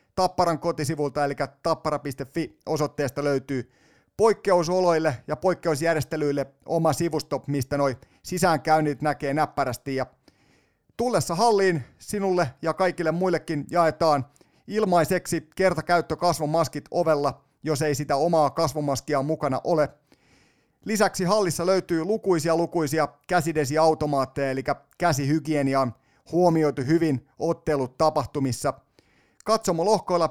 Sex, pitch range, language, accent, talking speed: male, 140-170 Hz, Finnish, native, 95 wpm